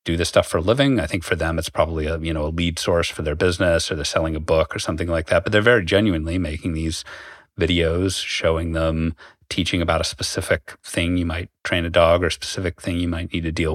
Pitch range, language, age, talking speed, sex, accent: 80-90 Hz, English, 30-49, 255 wpm, male, American